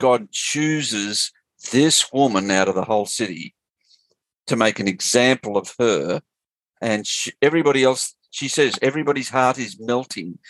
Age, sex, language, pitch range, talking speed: 50-69, male, English, 110-135 Hz, 145 wpm